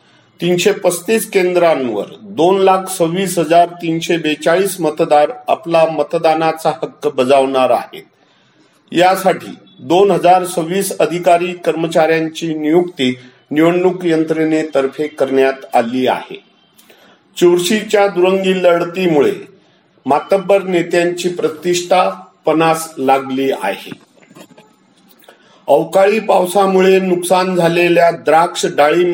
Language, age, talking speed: Marathi, 50-69, 70 wpm